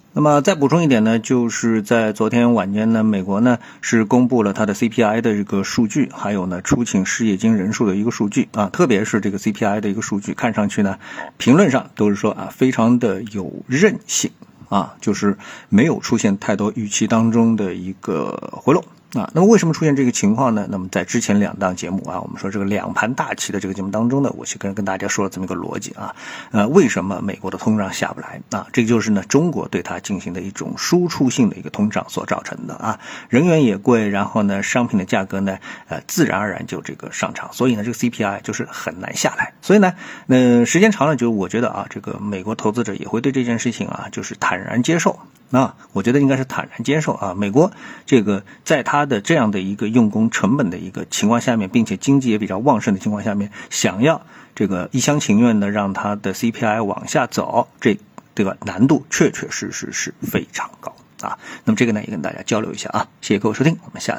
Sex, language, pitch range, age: male, Chinese, 100-130 Hz, 50-69